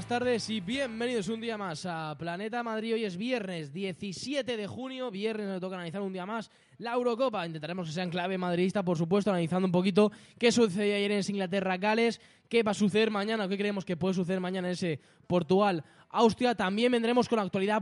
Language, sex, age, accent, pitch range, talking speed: Spanish, male, 10-29, Spanish, 175-225 Hz, 205 wpm